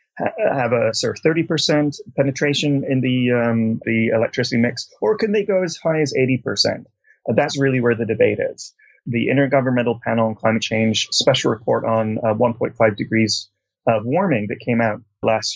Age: 30-49